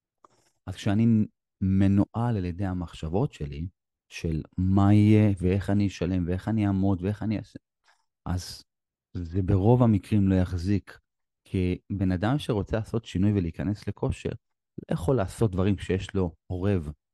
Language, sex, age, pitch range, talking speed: Hebrew, male, 30-49, 90-105 Hz, 140 wpm